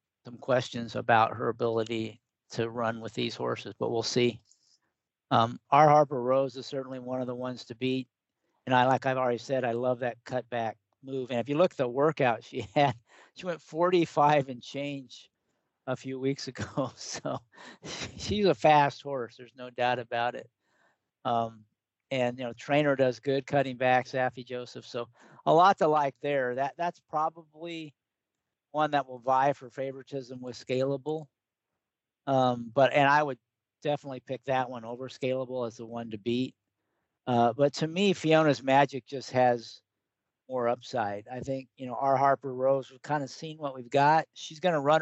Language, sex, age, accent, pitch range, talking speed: English, male, 50-69, American, 120-140 Hz, 180 wpm